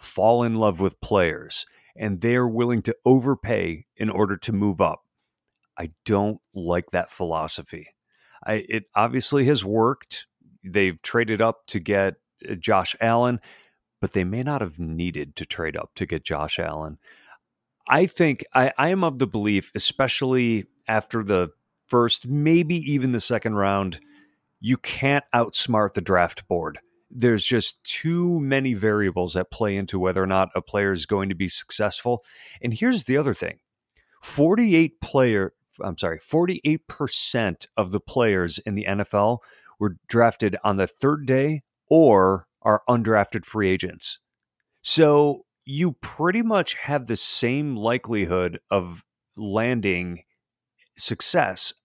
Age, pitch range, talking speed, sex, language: 40-59, 100-130 Hz, 140 wpm, male, English